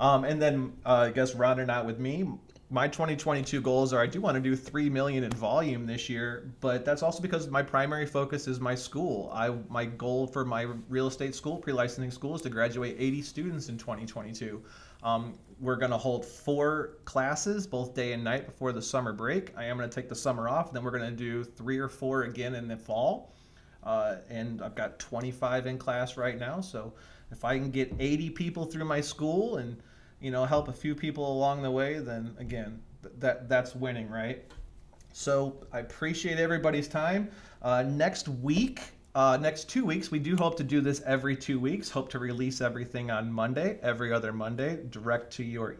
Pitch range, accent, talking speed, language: 120-155 Hz, American, 200 wpm, English